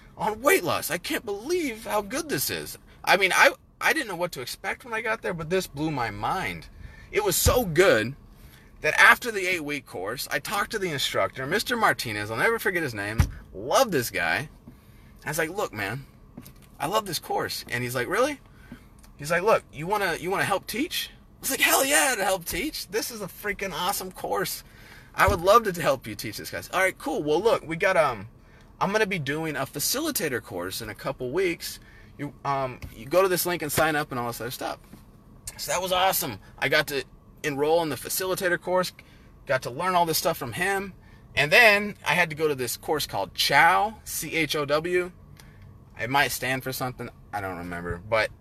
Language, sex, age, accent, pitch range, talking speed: English, male, 30-49, American, 120-185 Hz, 215 wpm